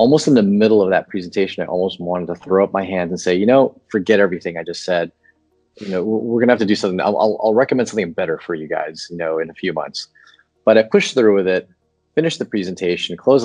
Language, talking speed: English, 250 wpm